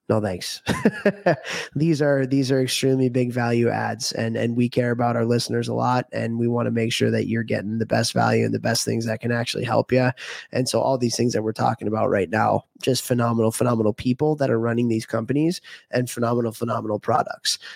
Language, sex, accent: English, male, American